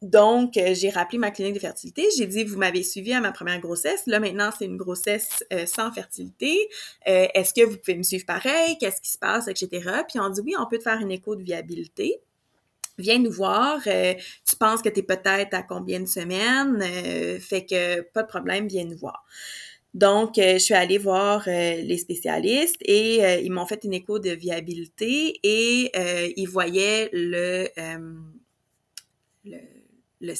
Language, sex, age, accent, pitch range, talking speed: French, female, 30-49, Canadian, 180-220 Hz, 195 wpm